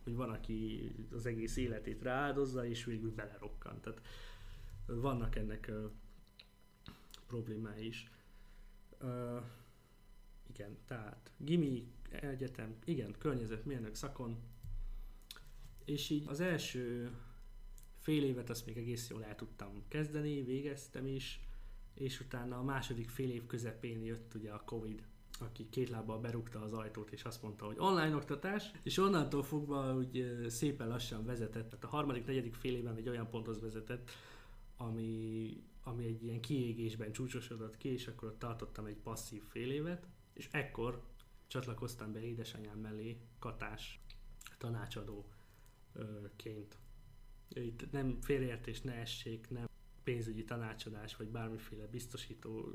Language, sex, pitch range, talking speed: Hungarian, male, 110-130 Hz, 125 wpm